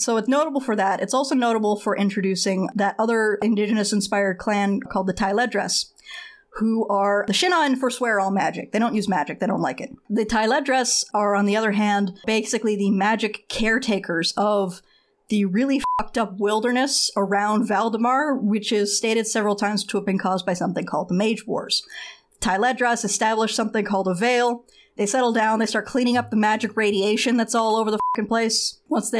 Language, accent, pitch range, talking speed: English, American, 200-240 Hz, 185 wpm